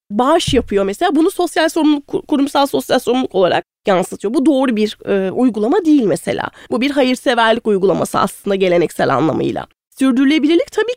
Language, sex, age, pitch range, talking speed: Turkish, female, 30-49, 240-365 Hz, 150 wpm